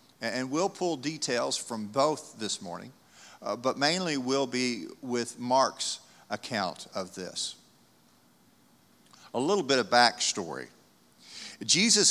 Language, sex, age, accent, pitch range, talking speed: English, male, 50-69, American, 125-175 Hz, 120 wpm